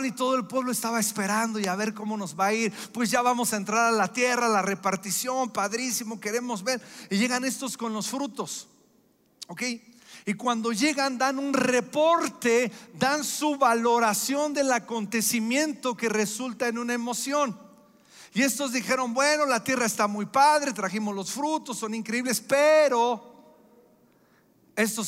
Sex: male